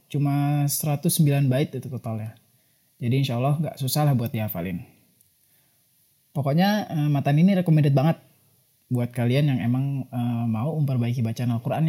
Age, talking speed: 30-49, 125 wpm